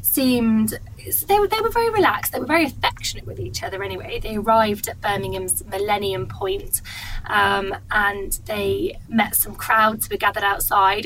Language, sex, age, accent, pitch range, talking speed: English, female, 20-39, British, 190-235 Hz, 170 wpm